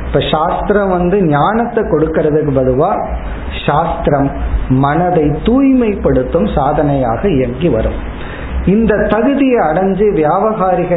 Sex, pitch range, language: male, 145-200 Hz, Tamil